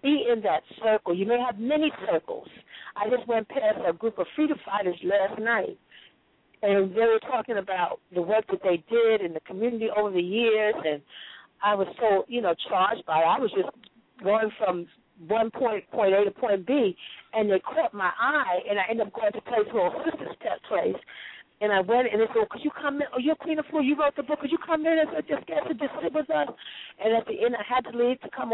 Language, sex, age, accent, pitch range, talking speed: English, female, 50-69, American, 210-290 Hz, 245 wpm